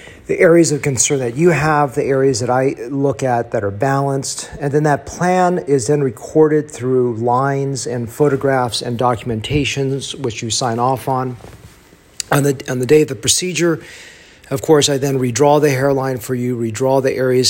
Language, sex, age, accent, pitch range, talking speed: English, male, 40-59, American, 125-150 Hz, 185 wpm